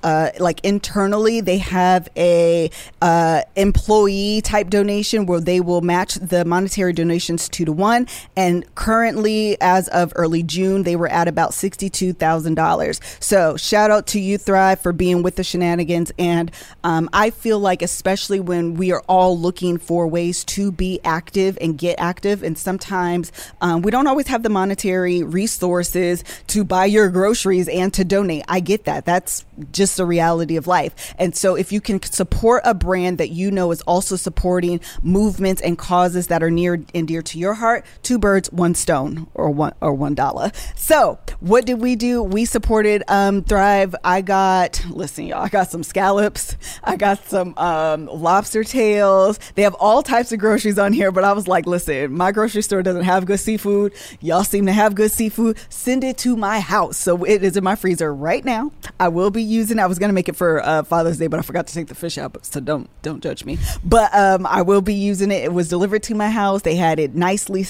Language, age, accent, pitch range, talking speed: English, 20-39, American, 175-205 Hz, 200 wpm